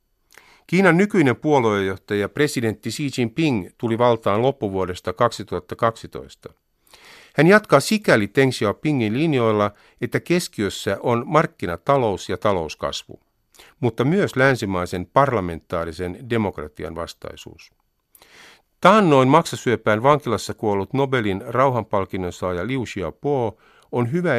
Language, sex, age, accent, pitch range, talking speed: Finnish, male, 50-69, native, 100-145 Hz, 95 wpm